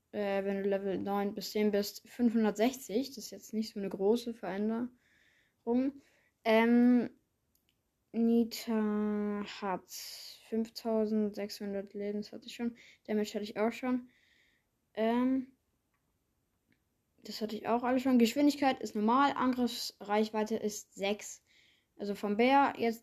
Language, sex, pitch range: German, female, 205-245 Hz